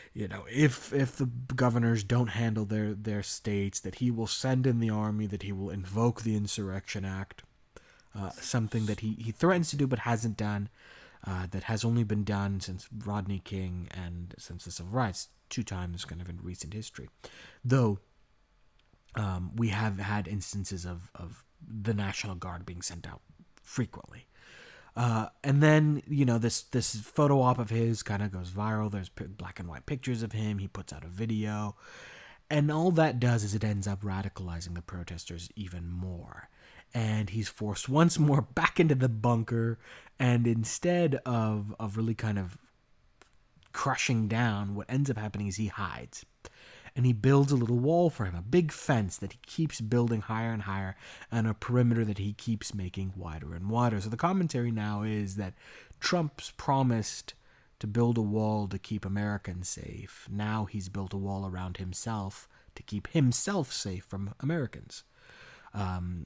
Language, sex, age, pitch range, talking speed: English, male, 30-49, 95-120 Hz, 175 wpm